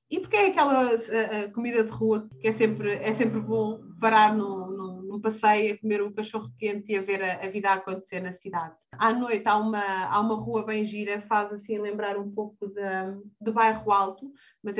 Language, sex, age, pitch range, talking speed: Portuguese, female, 30-49, 195-225 Hz, 205 wpm